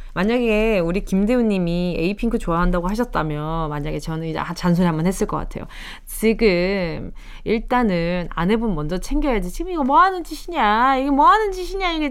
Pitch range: 175-285 Hz